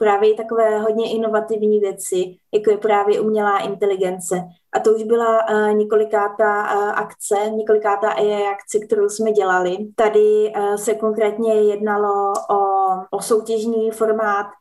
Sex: female